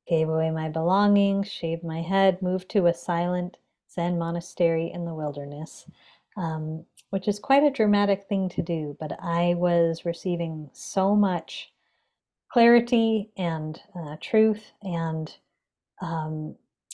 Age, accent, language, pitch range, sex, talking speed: 30-49, American, English, 165-195 Hz, female, 130 wpm